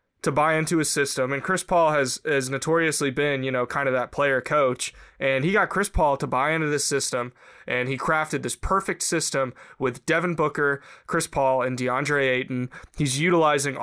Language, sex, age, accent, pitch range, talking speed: English, male, 20-39, American, 130-165 Hz, 195 wpm